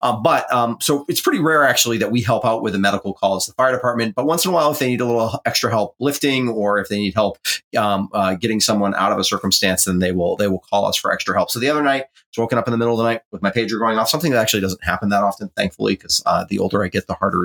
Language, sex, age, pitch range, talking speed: English, male, 30-49, 95-115 Hz, 315 wpm